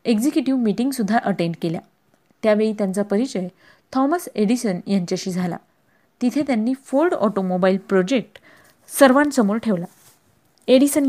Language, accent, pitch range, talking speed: Marathi, native, 195-250 Hz, 105 wpm